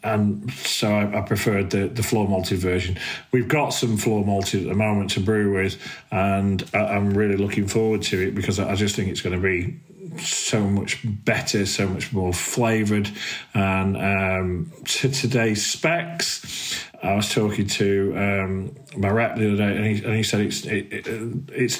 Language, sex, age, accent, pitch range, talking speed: English, male, 40-59, British, 100-115 Hz, 175 wpm